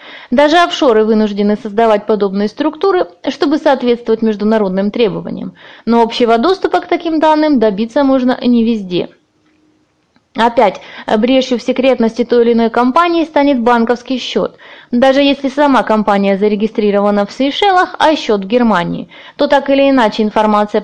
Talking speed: 135 wpm